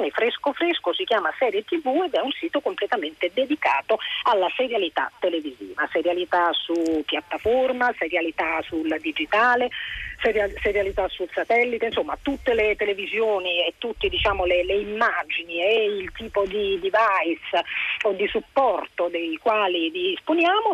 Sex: female